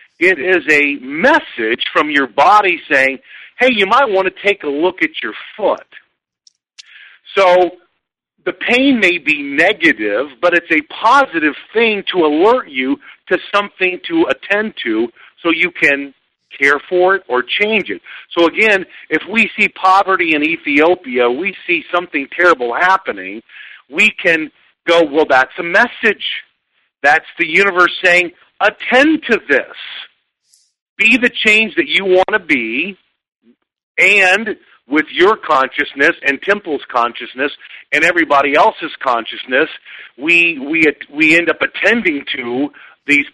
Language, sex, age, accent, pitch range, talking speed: English, male, 50-69, American, 150-200 Hz, 140 wpm